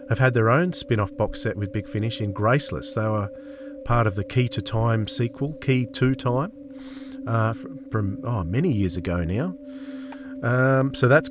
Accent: Australian